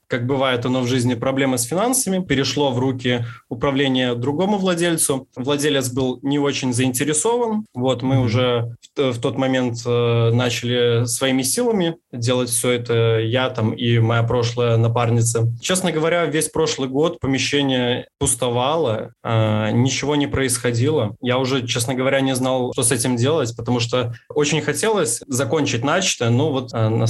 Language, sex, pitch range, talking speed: Russian, male, 125-140 Hz, 145 wpm